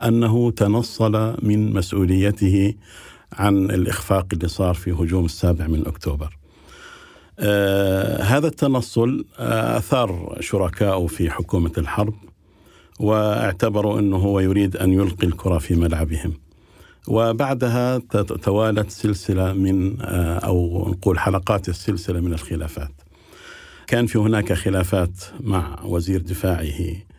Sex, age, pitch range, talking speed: male, 50-69, 90-105 Hz, 105 wpm